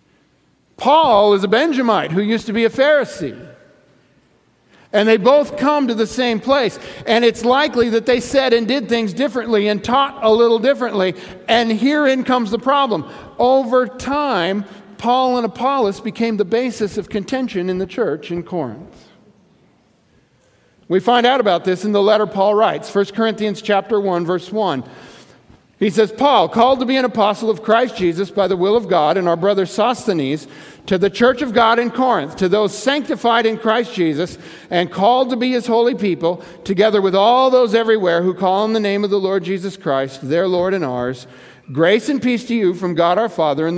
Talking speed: 190 wpm